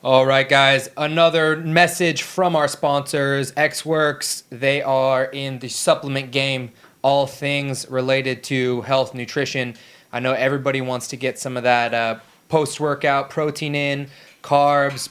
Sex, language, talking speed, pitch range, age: male, English, 140 wpm, 120-140 Hz, 20-39